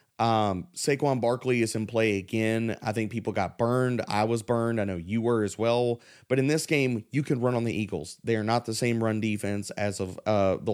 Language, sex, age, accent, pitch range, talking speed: English, male, 30-49, American, 110-130 Hz, 235 wpm